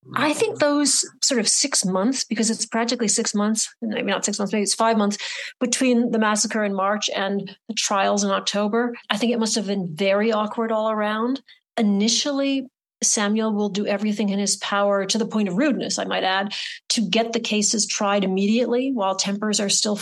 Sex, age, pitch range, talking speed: female, 40-59, 200-230 Hz, 200 wpm